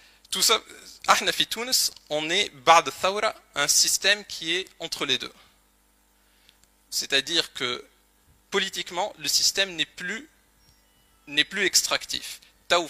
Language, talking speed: Arabic, 100 wpm